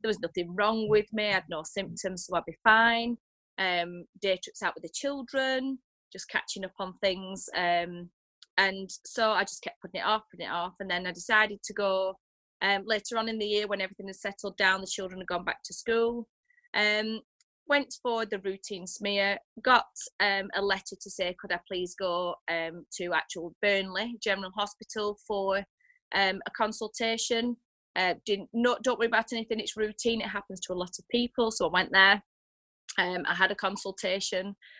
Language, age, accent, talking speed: English, 30-49, British, 200 wpm